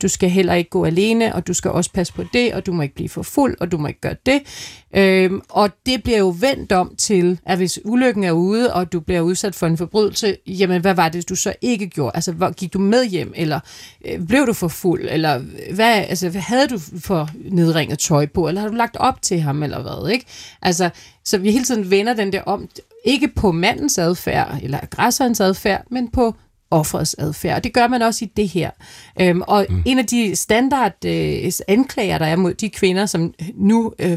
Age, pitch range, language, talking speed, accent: 40-59, 170-215 Hz, Danish, 220 wpm, native